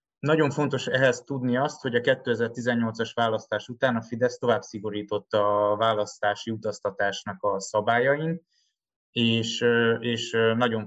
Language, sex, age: Hungarian, male, 20-39